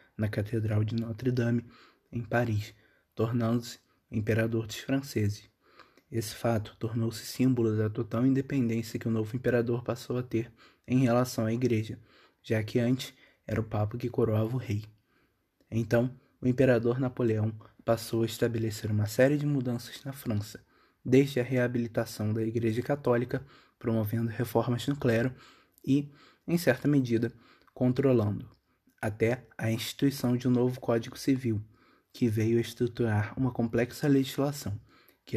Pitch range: 110-130 Hz